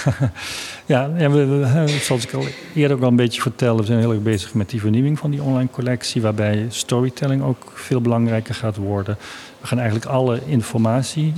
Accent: Dutch